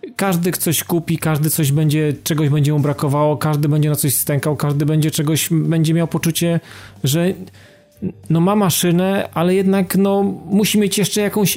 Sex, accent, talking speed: male, native, 165 wpm